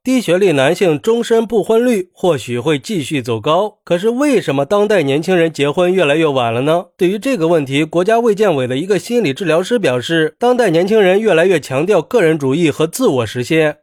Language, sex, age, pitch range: Chinese, male, 30-49, 145-205 Hz